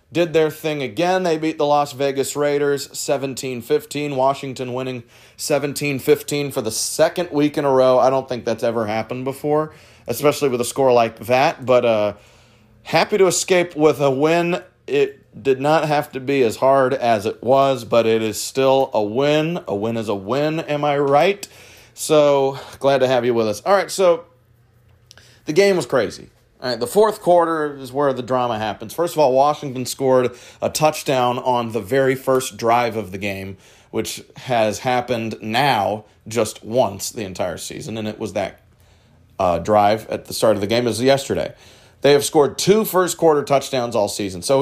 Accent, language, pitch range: American, English, 115-150 Hz